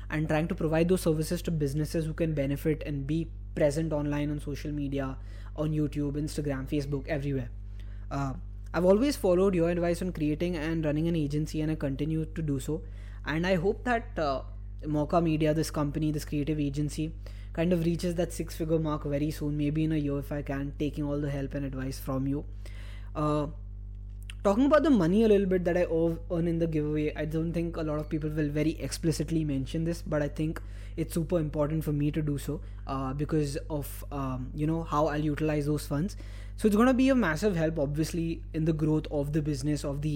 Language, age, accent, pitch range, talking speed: English, 20-39, Indian, 140-160 Hz, 210 wpm